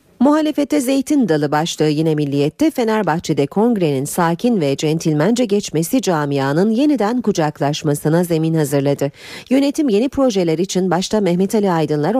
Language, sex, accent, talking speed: Turkish, female, native, 125 wpm